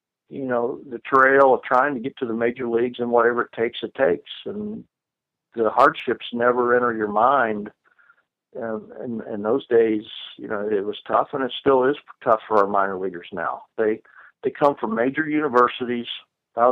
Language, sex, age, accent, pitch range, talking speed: English, male, 50-69, American, 105-125 Hz, 185 wpm